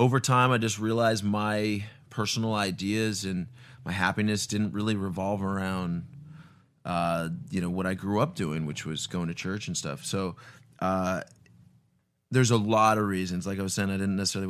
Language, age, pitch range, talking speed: English, 30-49, 95-120 Hz, 180 wpm